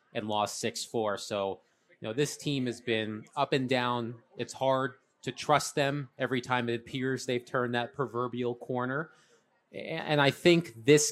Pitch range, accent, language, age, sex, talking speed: 115-135 Hz, American, English, 30-49, male, 165 wpm